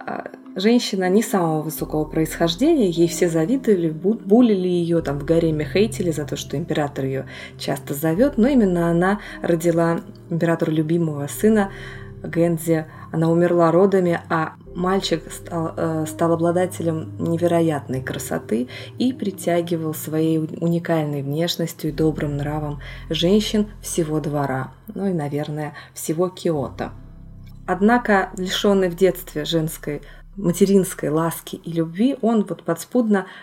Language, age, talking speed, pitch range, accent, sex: Russian, 20-39, 120 wpm, 155-190 Hz, native, female